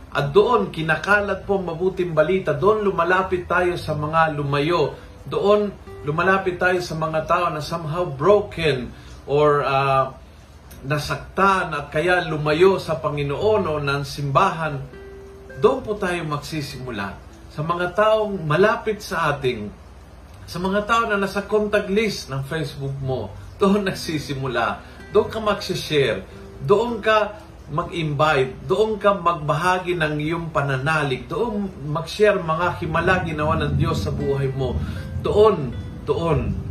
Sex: male